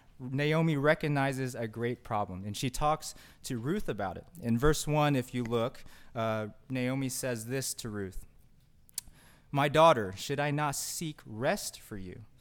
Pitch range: 110-145 Hz